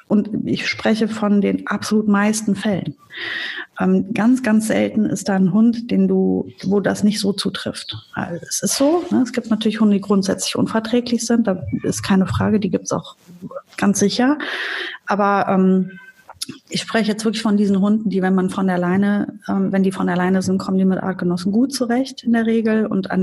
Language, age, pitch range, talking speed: German, 30-49, 185-220 Hz, 200 wpm